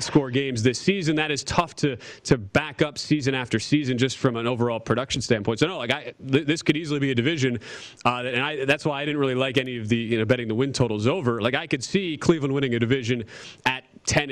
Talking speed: 250 wpm